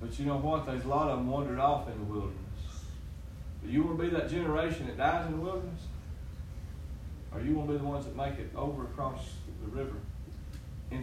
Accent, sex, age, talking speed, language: American, male, 40-59, 225 wpm, English